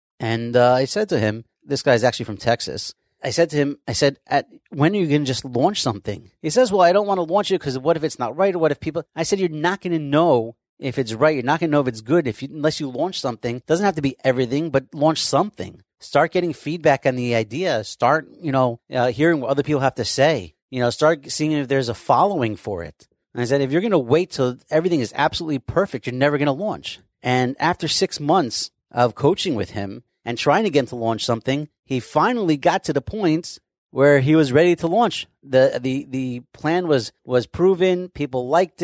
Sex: male